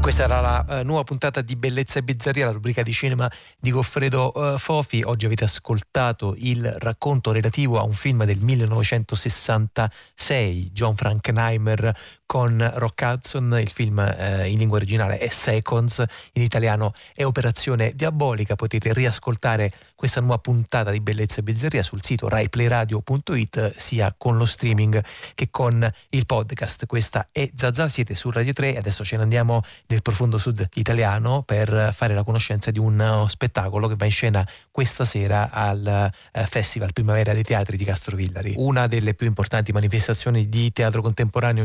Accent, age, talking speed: native, 30-49, 160 wpm